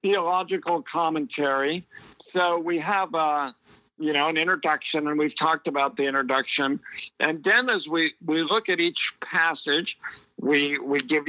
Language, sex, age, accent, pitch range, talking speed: English, male, 50-69, American, 140-170 Hz, 150 wpm